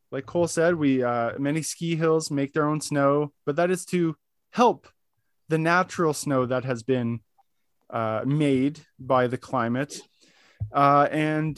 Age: 20-39